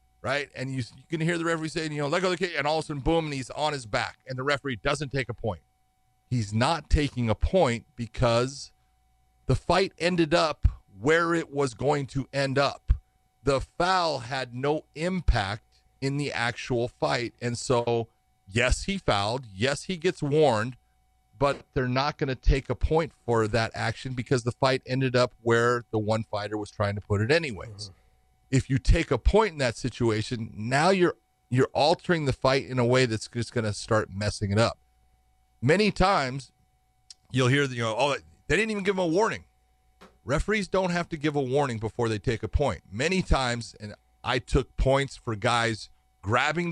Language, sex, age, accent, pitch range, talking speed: English, male, 40-59, American, 110-150 Hz, 200 wpm